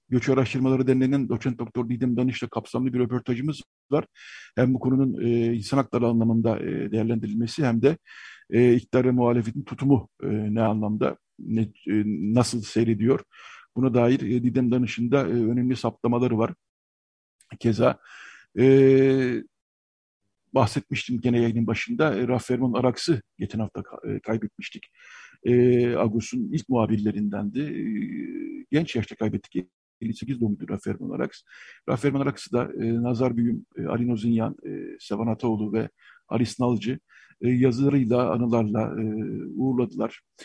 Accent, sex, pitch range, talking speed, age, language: native, male, 115-130 Hz, 130 wpm, 50-69, Turkish